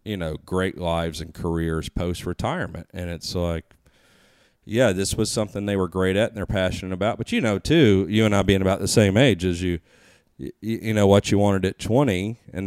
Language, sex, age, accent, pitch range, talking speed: English, male, 40-59, American, 85-100 Hz, 220 wpm